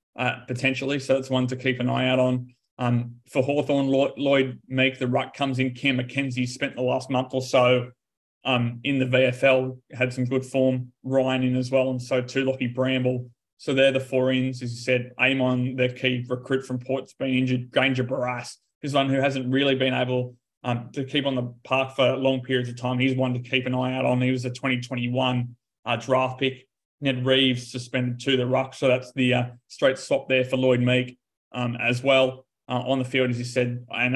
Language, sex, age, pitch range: English, male, 20-39, 125-130 Hz